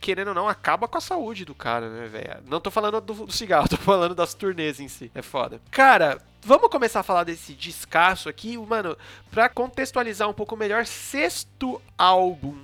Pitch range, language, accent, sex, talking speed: 150-230 Hz, Portuguese, Brazilian, male, 190 wpm